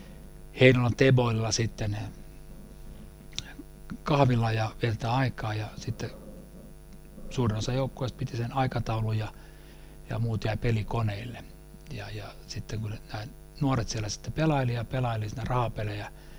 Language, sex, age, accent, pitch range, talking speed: Finnish, male, 60-79, native, 105-130 Hz, 115 wpm